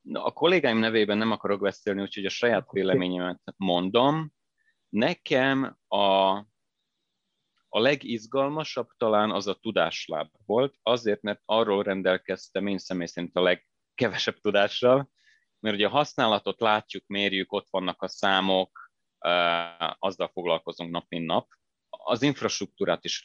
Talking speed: 125 wpm